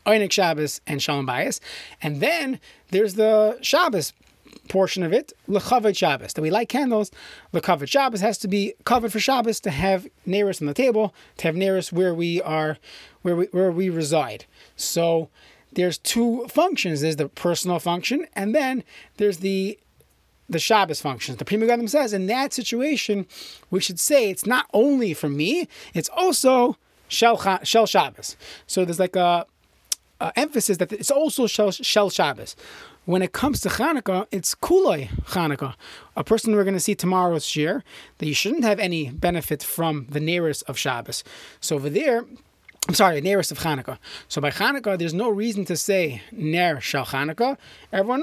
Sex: male